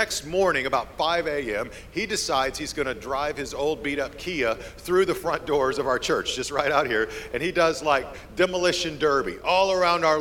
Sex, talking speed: male, 205 wpm